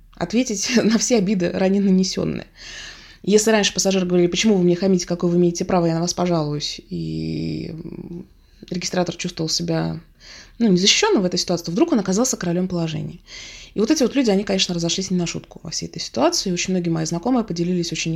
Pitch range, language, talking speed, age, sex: 170-210 Hz, Russian, 190 wpm, 20-39, female